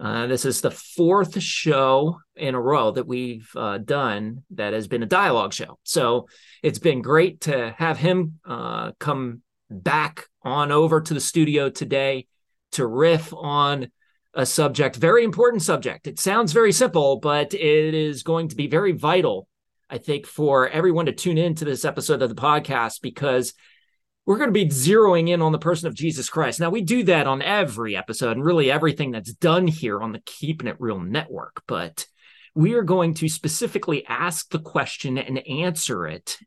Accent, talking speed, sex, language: American, 185 wpm, male, English